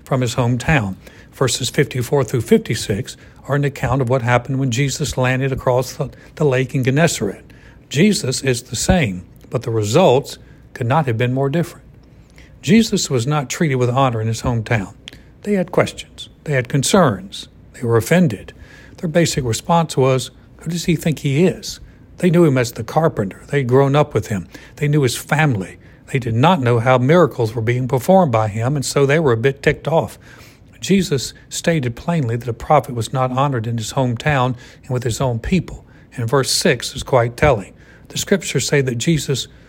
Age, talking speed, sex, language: 60-79, 190 wpm, male, English